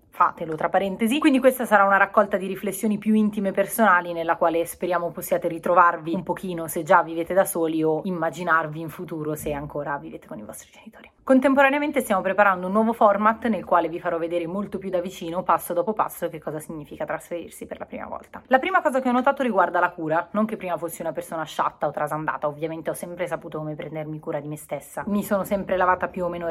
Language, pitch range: Italian, 160-195 Hz